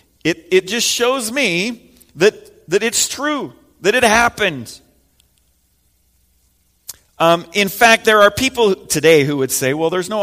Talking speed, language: 145 wpm, English